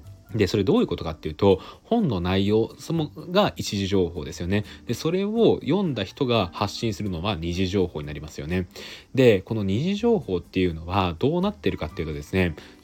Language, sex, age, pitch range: Japanese, male, 20-39, 90-145 Hz